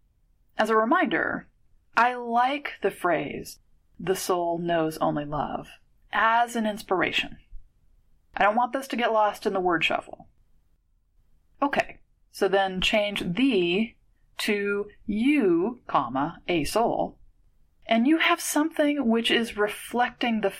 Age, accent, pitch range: 30-49, American, 185-295 Hz